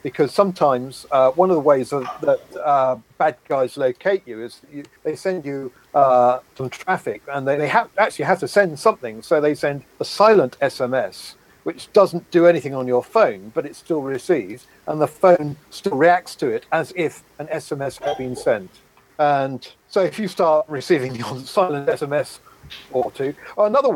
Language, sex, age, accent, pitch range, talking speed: English, male, 50-69, British, 135-185 Hz, 190 wpm